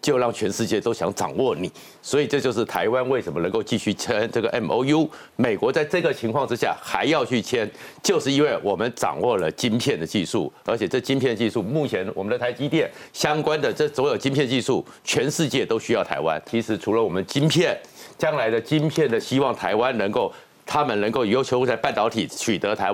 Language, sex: Chinese, male